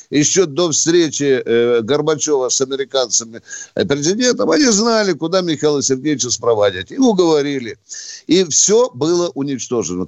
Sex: male